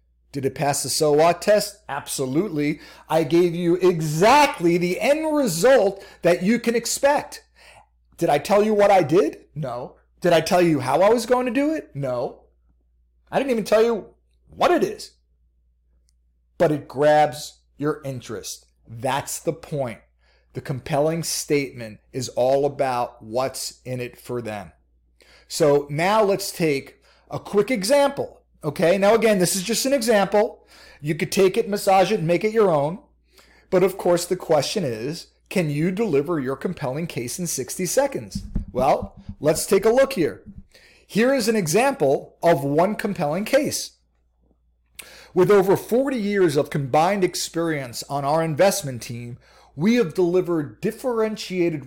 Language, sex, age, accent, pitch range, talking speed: English, male, 40-59, American, 135-210 Hz, 155 wpm